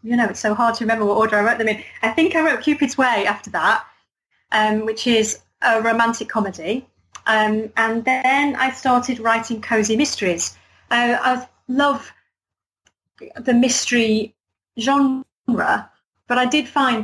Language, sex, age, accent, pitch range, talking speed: English, female, 30-49, British, 200-245 Hz, 160 wpm